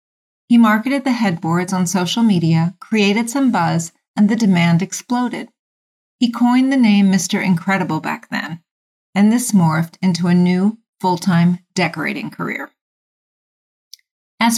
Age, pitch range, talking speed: 40-59, 170-220 Hz, 130 wpm